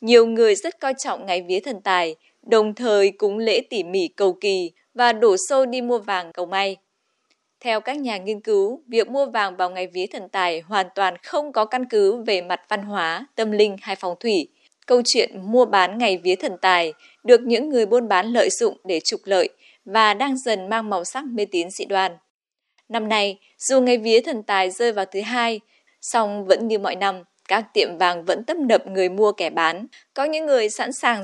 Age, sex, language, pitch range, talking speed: 20-39, female, Vietnamese, 190-250 Hz, 215 wpm